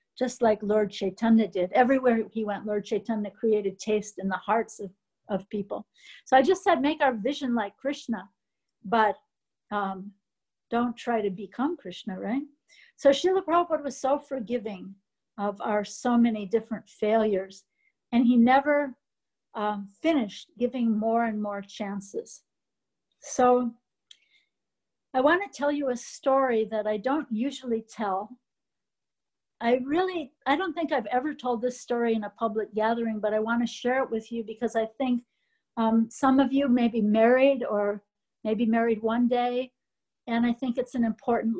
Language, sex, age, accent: English, female, 50-69, American